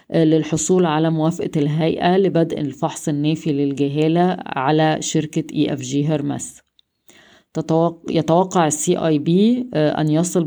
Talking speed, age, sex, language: 110 wpm, 20-39, female, Arabic